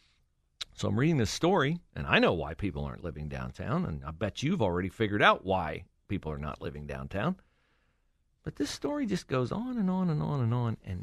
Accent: American